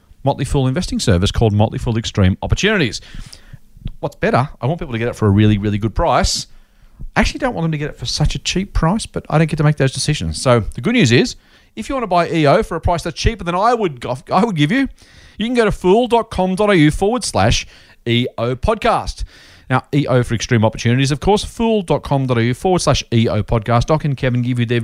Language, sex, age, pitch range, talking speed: English, male, 40-59, 115-170 Hz, 230 wpm